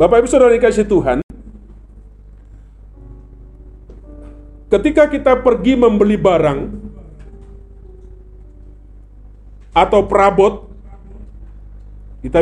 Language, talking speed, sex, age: Indonesian, 65 wpm, male, 40-59